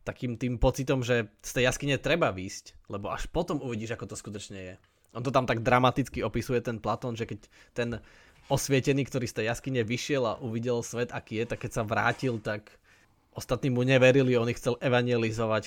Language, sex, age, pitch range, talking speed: Slovak, male, 20-39, 105-130 Hz, 195 wpm